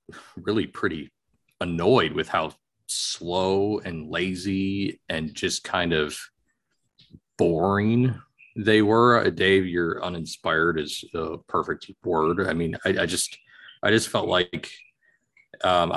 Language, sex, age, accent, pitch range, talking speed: English, male, 40-59, American, 85-100 Hz, 125 wpm